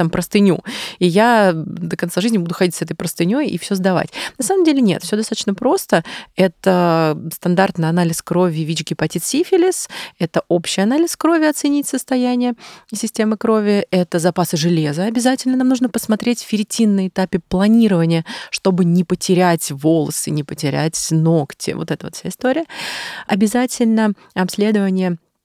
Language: Russian